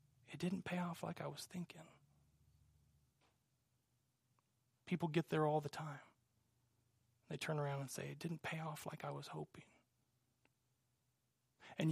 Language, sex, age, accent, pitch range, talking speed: English, male, 30-49, American, 135-215 Hz, 140 wpm